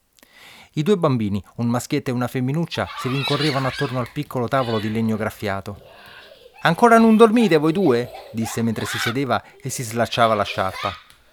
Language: Italian